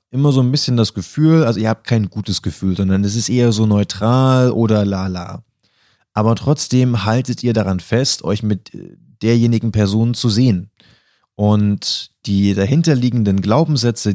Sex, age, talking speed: male, 30-49, 155 wpm